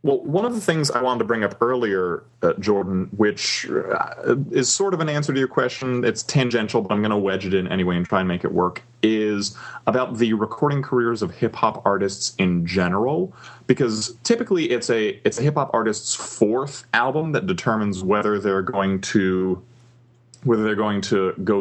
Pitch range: 95-120 Hz